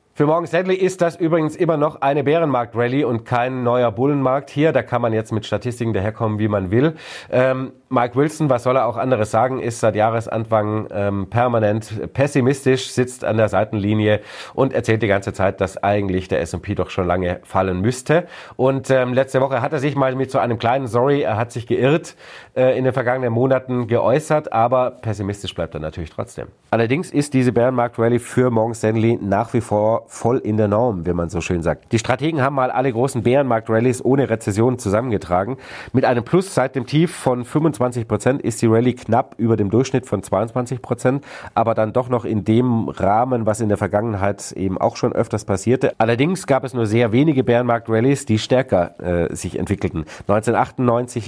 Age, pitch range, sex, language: 40-59, 110-130 Hz, male, German